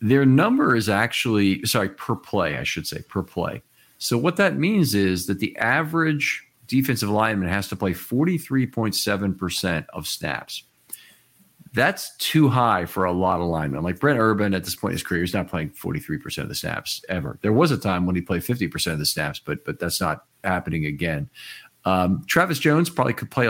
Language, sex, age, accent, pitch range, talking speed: English, male, 50-69, American, 95-125 Hz, 190 wpm